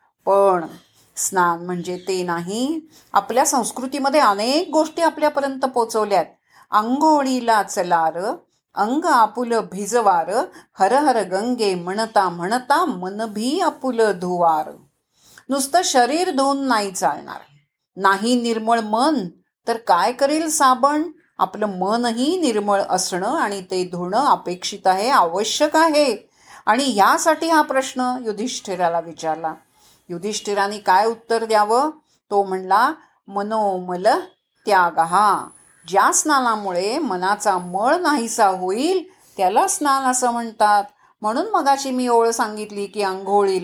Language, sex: Marathi, female